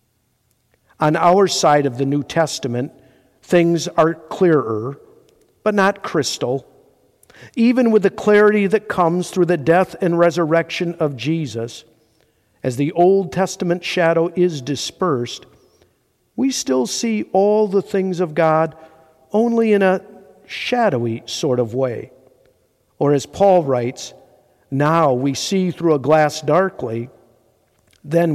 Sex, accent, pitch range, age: male, American, 135-180 Hz, 50-69